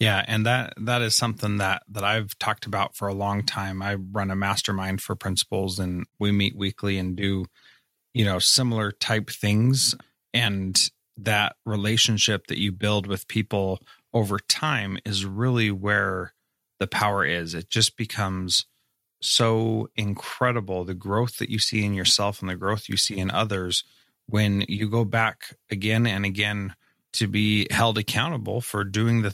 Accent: American